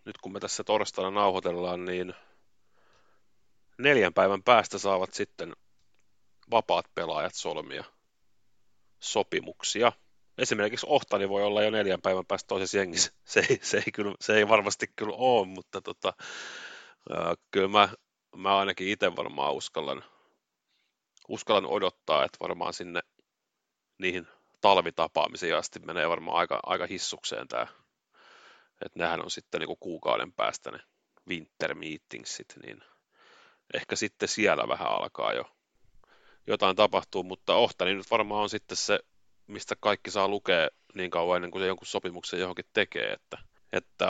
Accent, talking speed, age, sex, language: native, 130 wpm, 30-49, male, Finnish